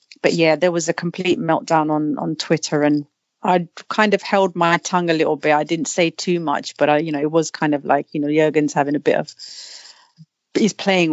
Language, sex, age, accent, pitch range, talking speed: English, female, 30-49, British, 165-210 Hz, 230 wpm